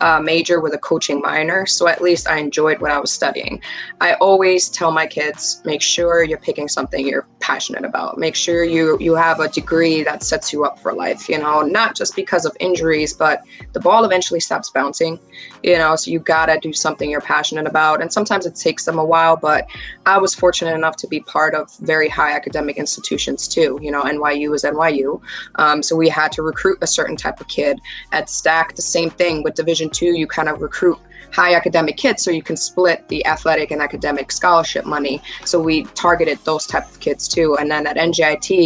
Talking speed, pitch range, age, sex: 215 wpm, 150-170 Hz, 20-39, female